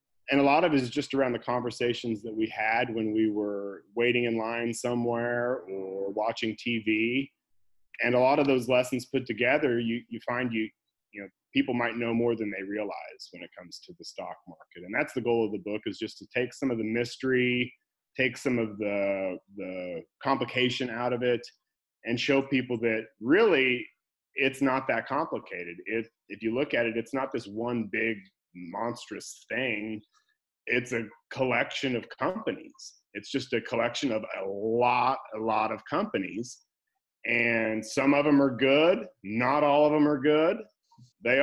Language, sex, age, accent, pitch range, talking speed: English, male, 30-49, American, 110-135 Hz, 185 wpm